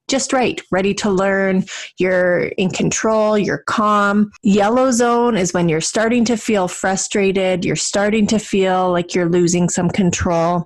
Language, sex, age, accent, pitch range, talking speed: English, female, 30-49, American, 190-225 Hz, 160 wpm